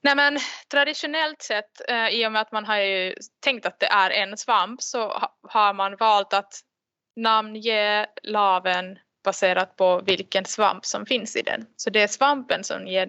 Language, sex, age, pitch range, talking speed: Swedish, female, 20-39, 195-235 Hz, 175 wpm